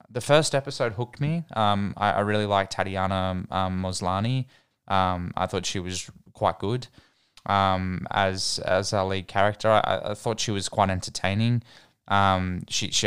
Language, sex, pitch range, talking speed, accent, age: English, male, 90-105 Hz, 165 wpm, Australian, 20-39